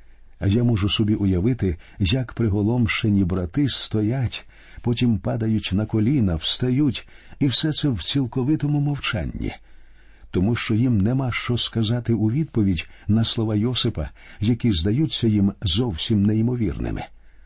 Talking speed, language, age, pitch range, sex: 125 wpm, Ukrainian, 50-69, 90-125 Hz, male